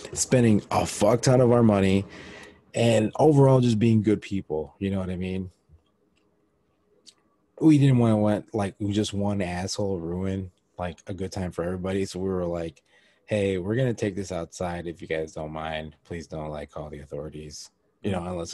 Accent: American